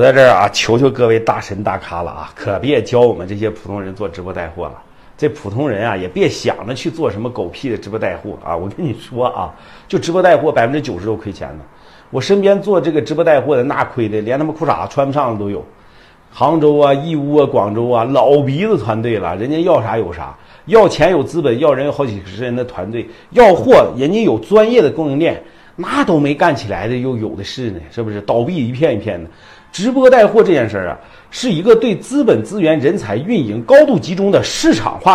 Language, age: Chinese, 50-69